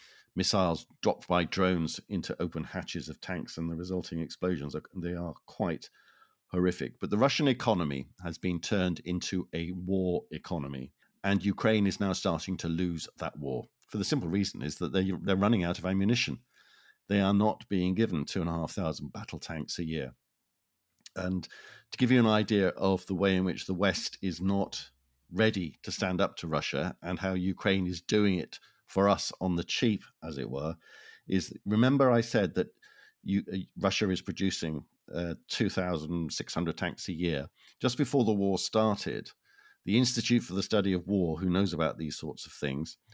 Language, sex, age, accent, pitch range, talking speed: English, male, 50-69, British, 85-100 Hz, 180 wpm